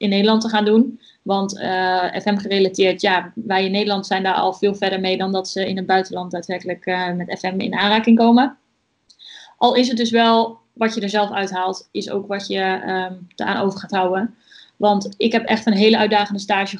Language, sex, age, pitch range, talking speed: Dutch, female, 20-39, 195-220 Hz, 210 wpm